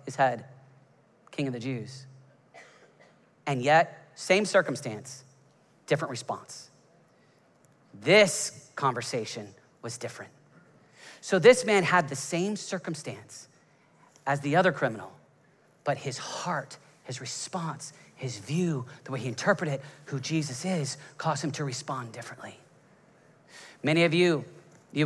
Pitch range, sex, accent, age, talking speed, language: 135-195 Hz, male, American, 30-49, 120 wpm, English